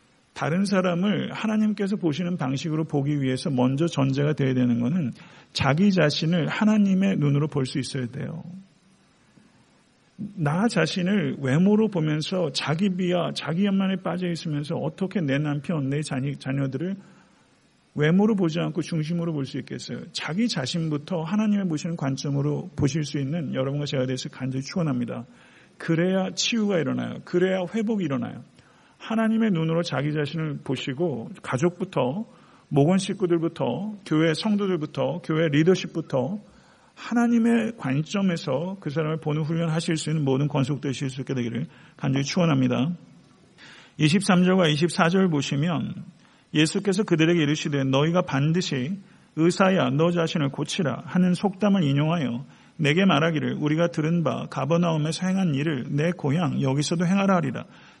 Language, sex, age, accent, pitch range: Korean, male, 40-59, native, 145-185 Hz